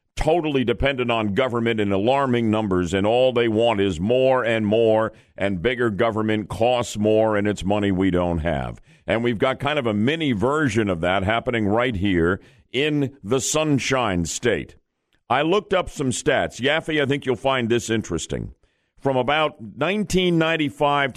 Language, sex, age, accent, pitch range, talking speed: English, male, 50-69, American, 110-150 Hz, 165 wpm